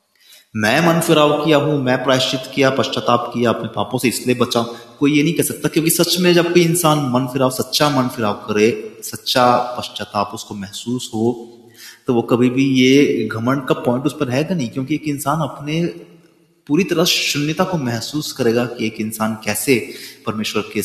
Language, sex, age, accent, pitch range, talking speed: Hindi, male, 30-49, native, 110-145 Hz, 190 wpm